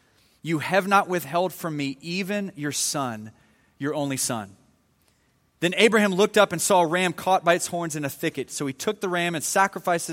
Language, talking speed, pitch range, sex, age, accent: English, 200 wpm, 135-180 Hz, male, 30-49, American